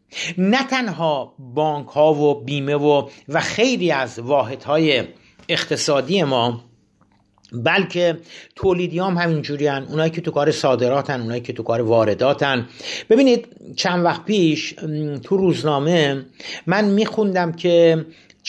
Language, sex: Persian, male